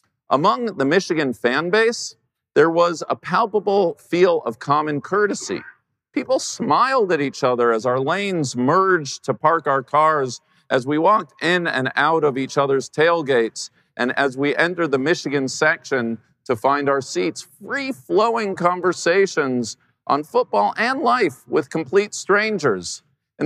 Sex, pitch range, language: male, 130-180 Hz, English